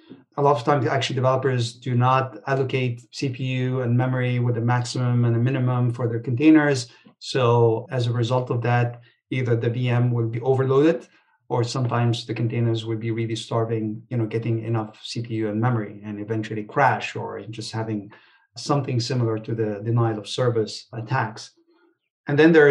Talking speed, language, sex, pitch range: 170 wpm, English, male, 115-140 Hz